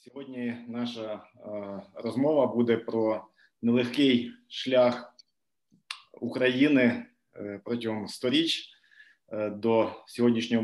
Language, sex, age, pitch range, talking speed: Ukrainian, male, 20-39, 110-130 Hz, 85 wpm